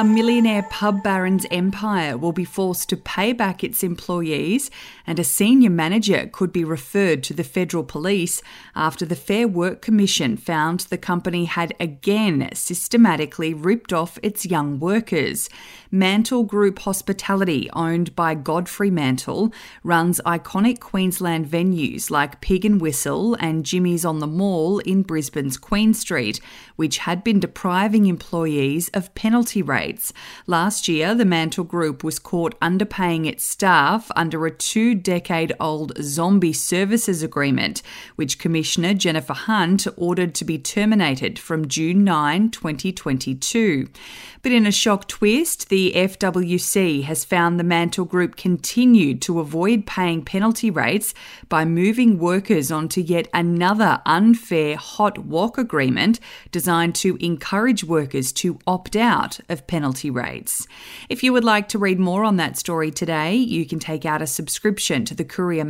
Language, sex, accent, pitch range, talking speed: English, female, Australian, 160-210 Hz, 145 wpm